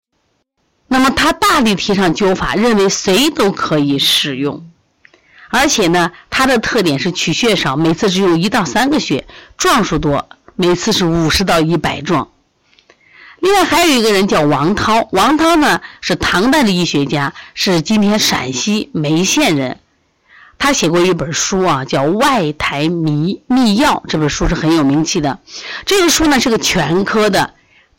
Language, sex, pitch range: Chinese, female, 165-260 Hz